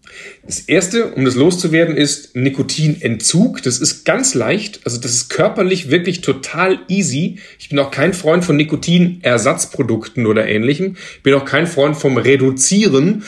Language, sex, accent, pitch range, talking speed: German, male, German, 130-180 Hz, 155 wpm